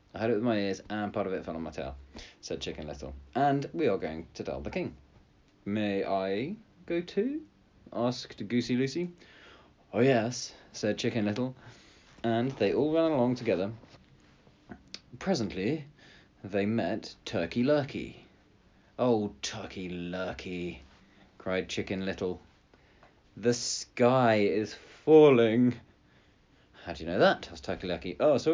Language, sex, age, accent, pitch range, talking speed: English, male, 30-49, British, 95-135 Hz, 145 wpm